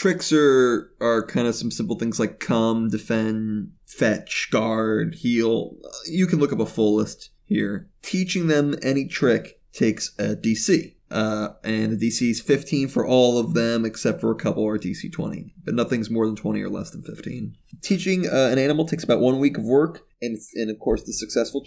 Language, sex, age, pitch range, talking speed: English, male, 20-39, 115-150 Hz, 195 wpm